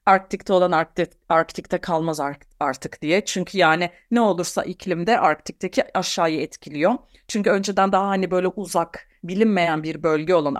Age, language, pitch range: 40-59, Turkish, 155-205 Hz